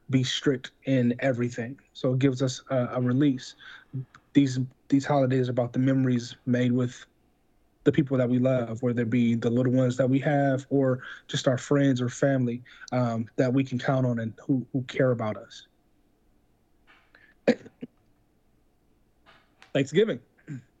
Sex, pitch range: male, 125-145 Hz